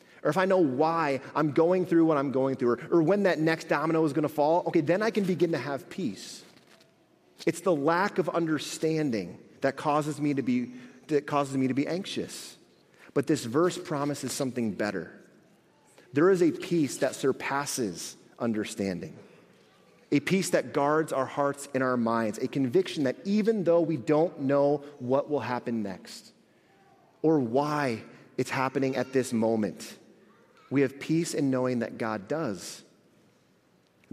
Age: 30-49